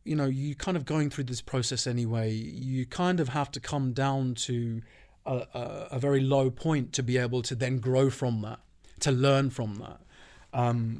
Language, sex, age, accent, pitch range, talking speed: English, male, 30-49, British, 110-140 Hz, 195 wpm